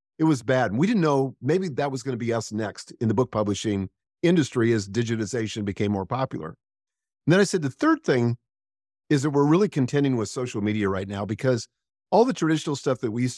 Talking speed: 220 wpm